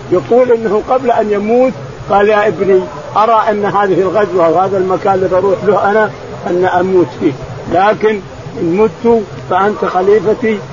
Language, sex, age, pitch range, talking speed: Arabic, male, 50-69, 185-235 Hz, 145 wpm